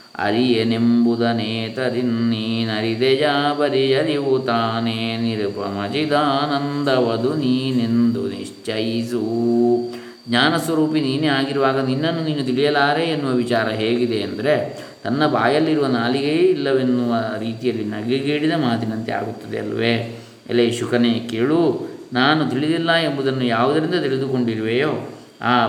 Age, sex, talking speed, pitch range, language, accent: 20-39, male, 85 wpm, 115-135 Hz, Kannada, native